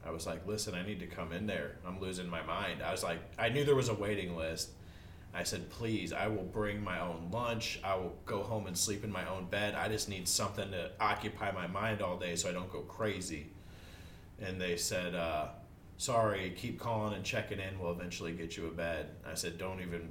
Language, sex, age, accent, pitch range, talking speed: English, male, 30-49, American, 85-105 Hz, 235 wpm